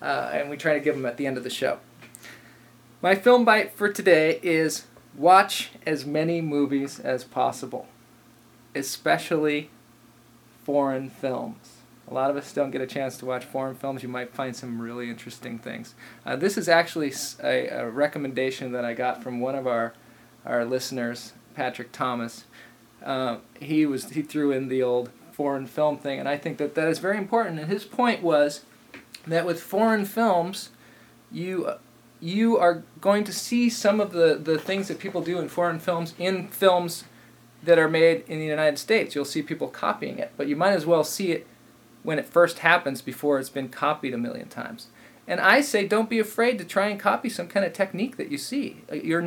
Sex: male